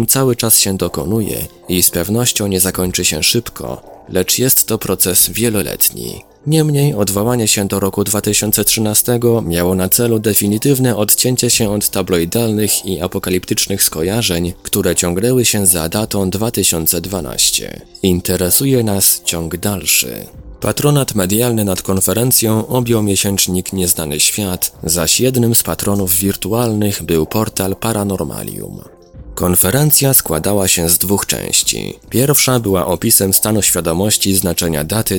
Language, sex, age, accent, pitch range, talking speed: Polish, male, 20-39, native, 90-110 Hz, 125 wpm